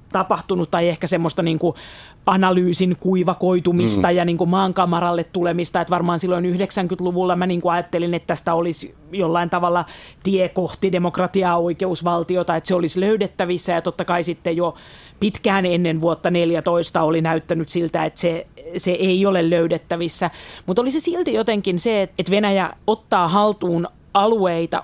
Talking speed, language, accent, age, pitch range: 150 wpm, Finnish, native, 30-49, 170-190 Hz